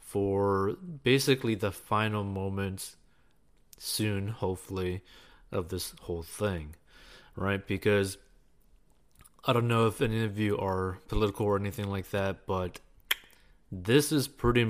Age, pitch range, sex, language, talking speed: 20-39, 95-115 Hz, male, English, 125 wpm